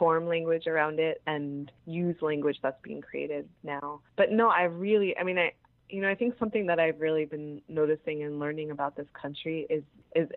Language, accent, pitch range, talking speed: English, American, 140-165 Hz, 205 wpm